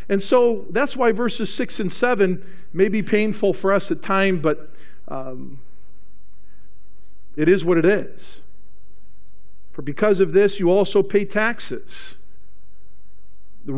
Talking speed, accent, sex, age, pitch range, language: 135 wpm, American, male, 50-69, 140-195 Hz, English